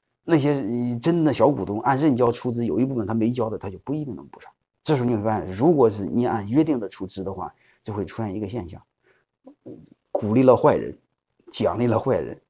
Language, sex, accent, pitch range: Chinese, male, native, 100-140 Hz